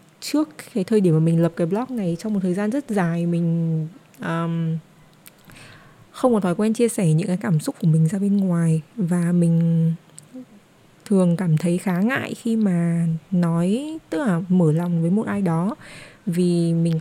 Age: 20-39